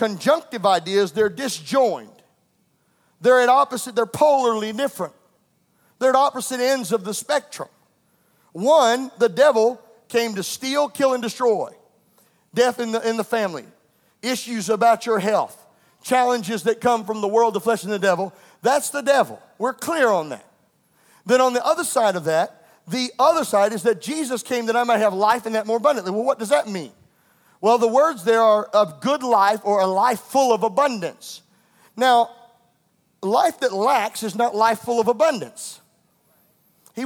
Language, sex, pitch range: English, male, 210-260 Hz